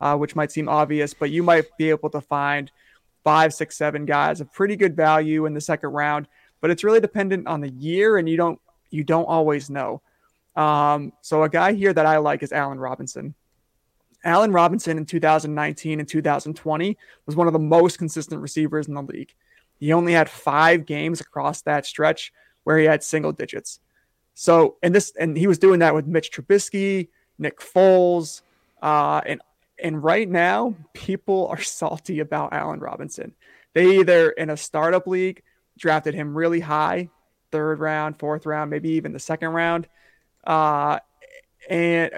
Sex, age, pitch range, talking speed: male, 30-49, 150-175 Hz, 175 wpm